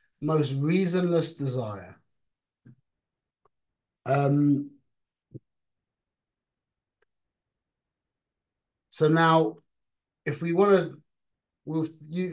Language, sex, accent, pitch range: English, male, British, 130-165 Hz